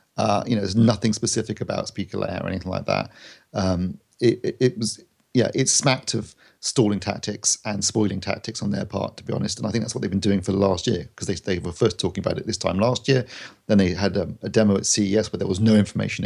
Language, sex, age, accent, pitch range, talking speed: English, male, 40-59, British, 95-115 Hz, 260 wpm